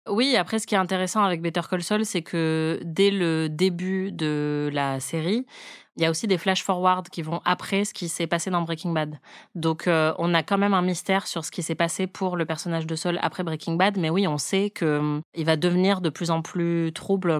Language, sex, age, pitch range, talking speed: French, female, 30-49, 160-185 Hz, 230 wpm